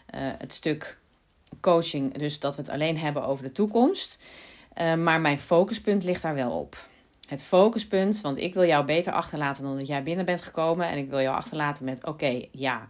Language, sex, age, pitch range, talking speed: Dutch, female, 30-49, 140-175 Hz, 200 wpm